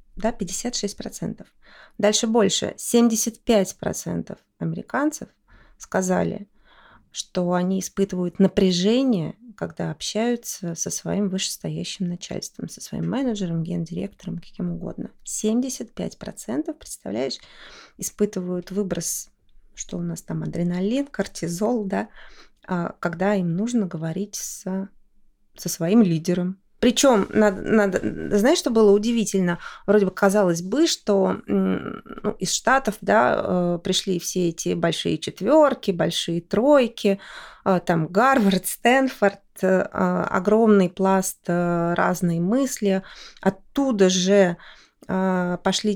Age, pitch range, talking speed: 20-39, 185-225 Hz, 95 wpm